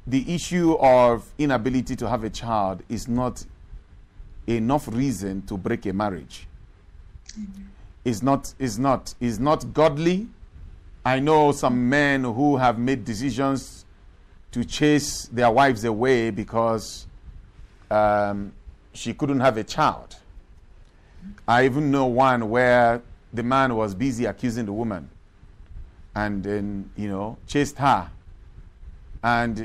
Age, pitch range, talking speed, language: 50-69, 95-130 Hz, 125 wpm, English